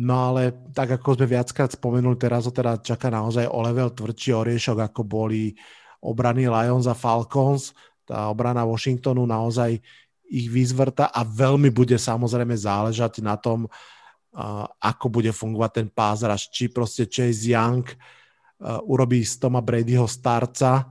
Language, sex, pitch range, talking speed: Slovak, male, 115-135 Hz, 140 wpm